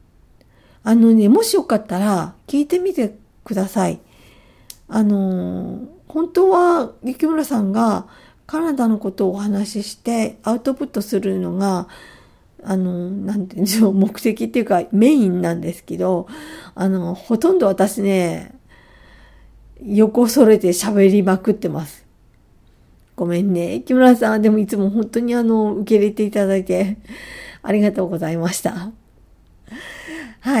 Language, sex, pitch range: Japanese, female, 195-255 Hz